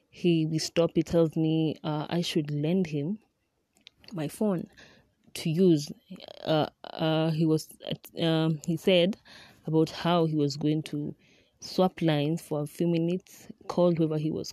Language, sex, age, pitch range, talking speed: English, female, 20-39, 155-180 Hz, 160 wpm